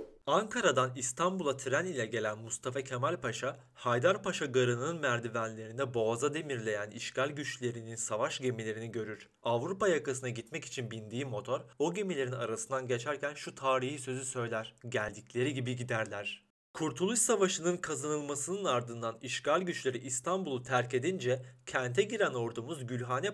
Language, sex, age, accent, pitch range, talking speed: Turkish, male, 40-59, native, 120-155 Hz, 125 wpm